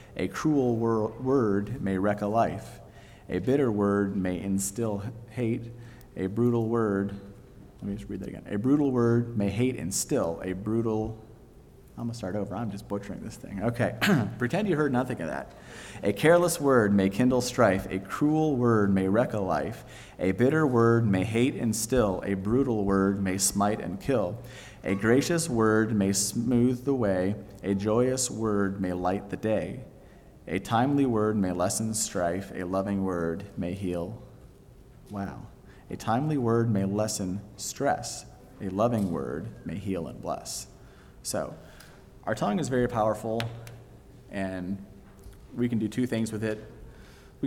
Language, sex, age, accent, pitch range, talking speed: English, male, 30-49, American, 95-120 Hz, 160 wpm